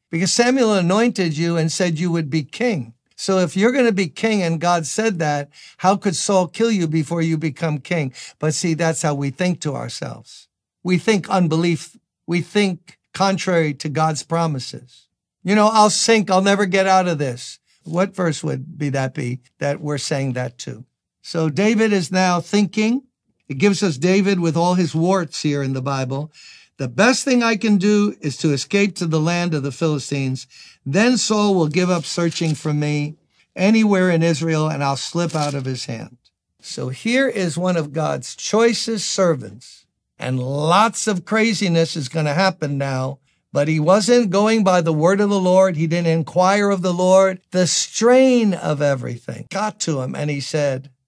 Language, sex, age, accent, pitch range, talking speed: English, male, 60-79, American, 150-200 Hz, 190 wpm